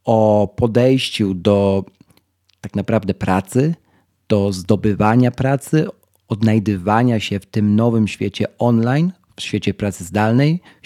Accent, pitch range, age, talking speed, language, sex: native, 105-140 Hz, 40-59, 115 wpm, Polish, male